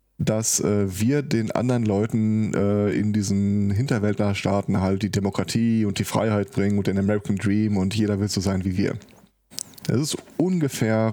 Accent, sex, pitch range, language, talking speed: German, male, 100-115 Hz, German, 165 wpm